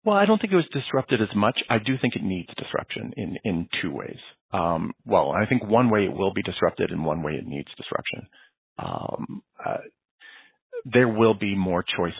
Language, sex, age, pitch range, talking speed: English, male, 40-59, 90-130 Hz, 205 wpm